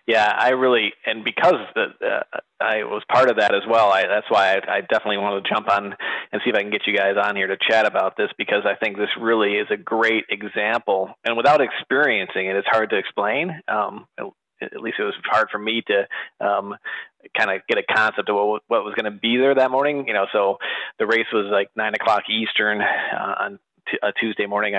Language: English